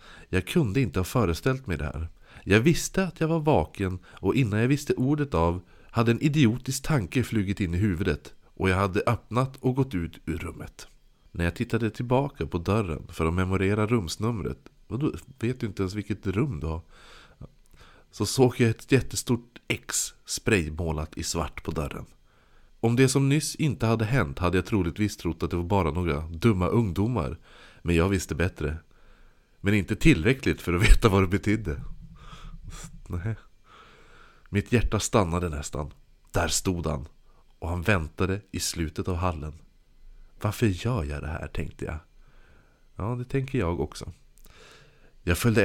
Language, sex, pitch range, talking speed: Swedish, male, 85-120 Hz, 165 wpm